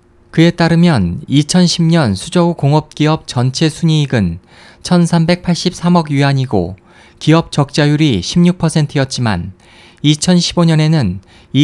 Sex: male